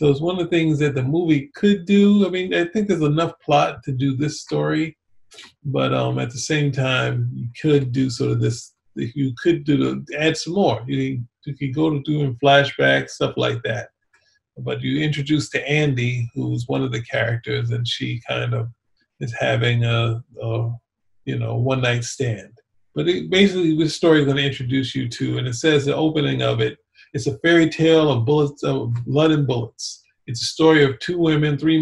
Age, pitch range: 40-59, 120-155 Hz